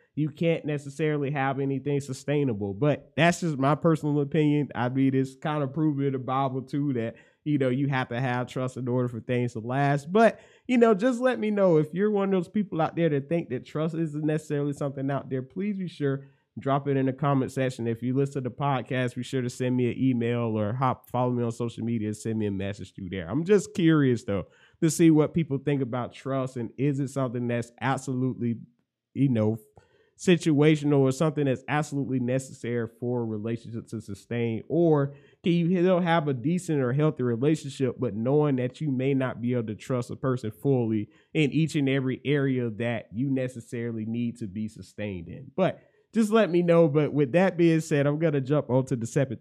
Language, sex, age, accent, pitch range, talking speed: English, male, 20-39, American, 120-150 Hz, 215 wpm